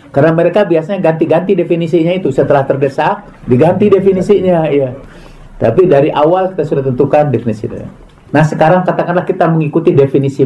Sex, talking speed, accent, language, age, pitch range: male, 140 wpm, native, Indonesian, 50-69, 130-180 Hz